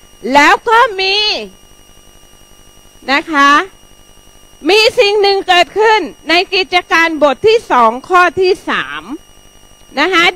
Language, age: Thai, 30-49